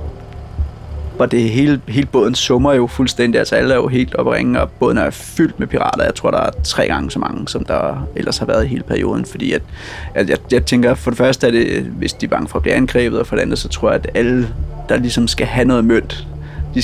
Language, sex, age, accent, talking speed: Danish, male, 30-49, native, 250 wpm